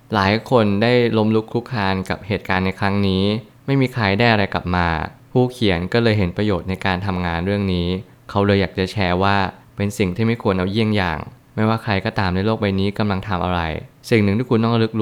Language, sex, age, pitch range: Thai, male, 20-39, 95-115 Hz